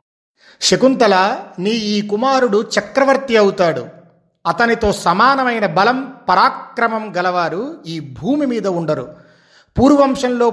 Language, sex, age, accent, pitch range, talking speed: Telugu, male, 40-59, native, 165-215 Hz, 90 wpm